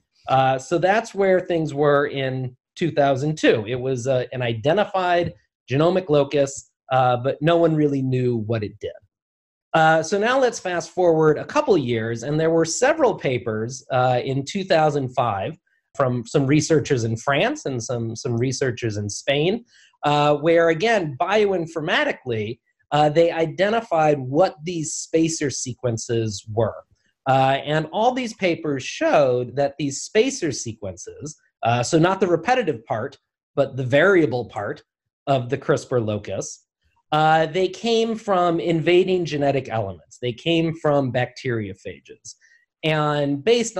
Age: 30-49